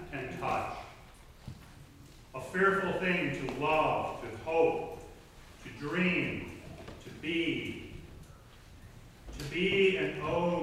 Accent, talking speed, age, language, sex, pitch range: American, 95 wpm, 40-59, English, male, 115-160 Hz